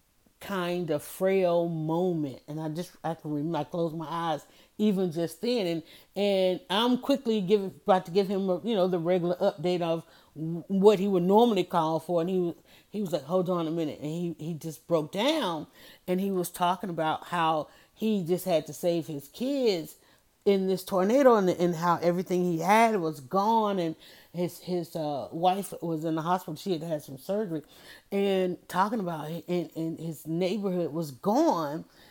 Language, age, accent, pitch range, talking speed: English, 40-59, American, 165-200 Hz, 195 wpm